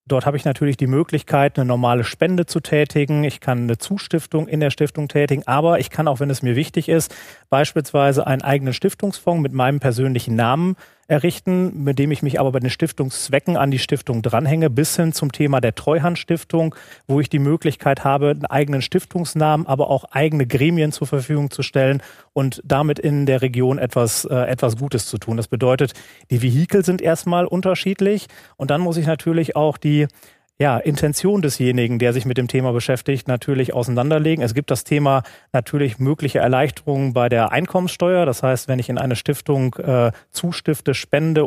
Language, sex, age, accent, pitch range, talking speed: German, male, 30-49, German, 130-155 Hz, 185 wpm